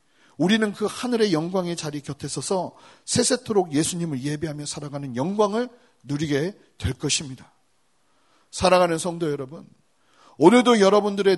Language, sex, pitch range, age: Korean, male, 155-225 Hz, 40-59